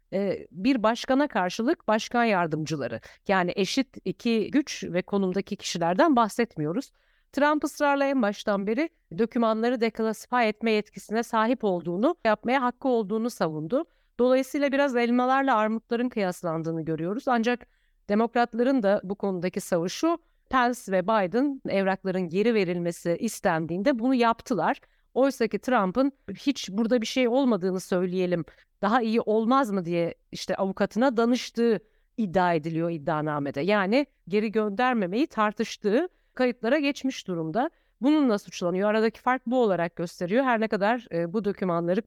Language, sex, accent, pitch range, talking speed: Turkish, female, native, 185-250 Hz, 125 wpm